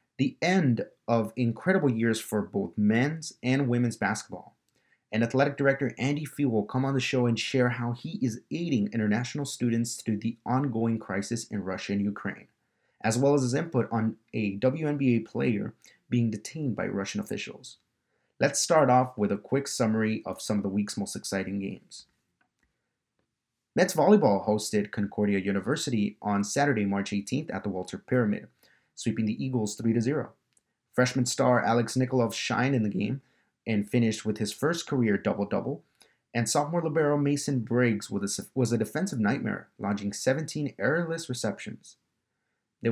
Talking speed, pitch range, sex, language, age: 155 wpm, 105-130 Hz, male, English, 30-49